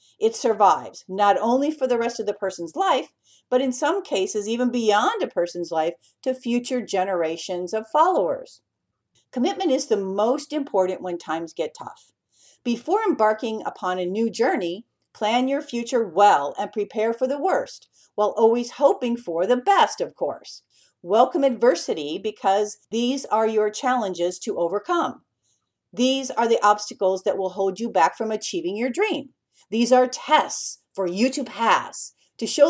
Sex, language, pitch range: female, English, 190-255 Hz